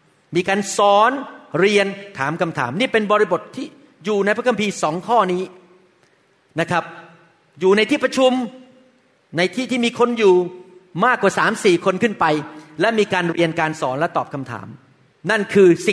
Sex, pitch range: male, 165-230 Hz